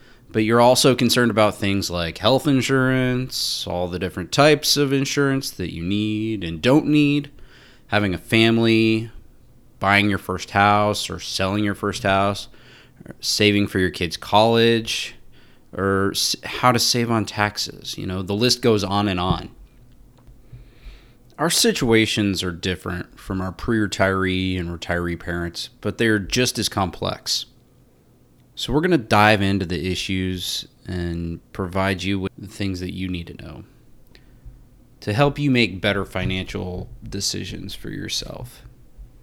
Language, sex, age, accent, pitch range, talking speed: English, male, 30-49, American, 95-120 Hz, 145 wpm